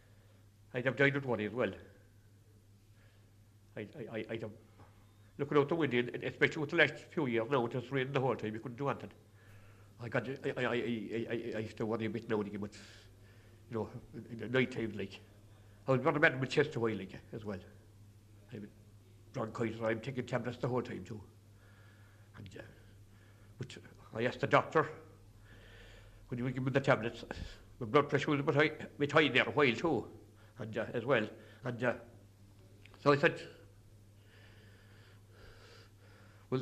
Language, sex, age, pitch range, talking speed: English, male, 60-79, 105-135 Hz, 180 wpm